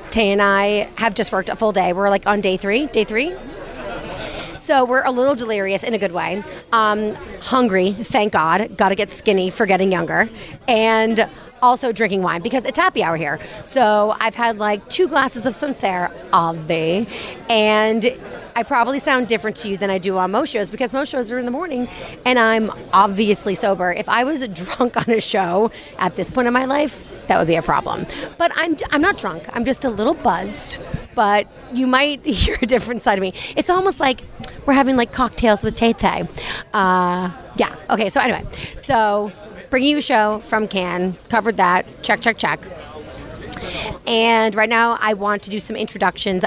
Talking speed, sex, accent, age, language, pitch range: 195 wpm, female, American, 30-49, English, 185-240 Hz